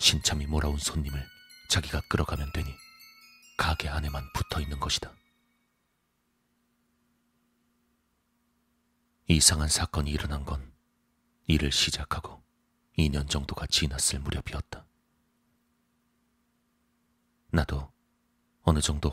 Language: Korean